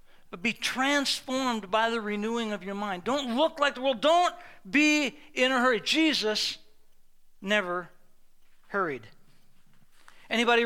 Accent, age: American, 60-79